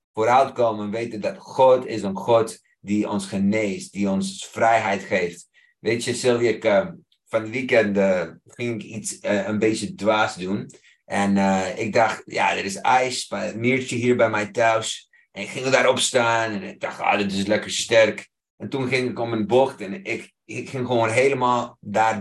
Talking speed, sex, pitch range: 195 wpm, male, 105-130 Hz